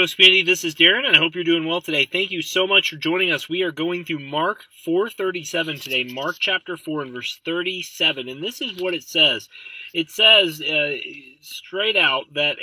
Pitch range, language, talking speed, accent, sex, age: 155-200 Hz, English, 220 wpm, American, male, 30-49